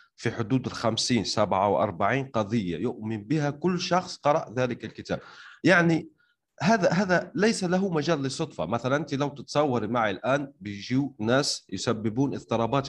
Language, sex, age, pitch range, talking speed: Arabic, male, 30-49, 110-160 Hz, 140 wpm